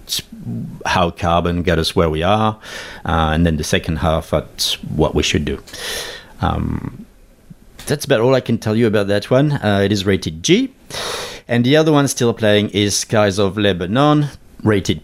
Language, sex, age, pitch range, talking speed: English, male, 50-69, 85-110 Hz, 180 wpm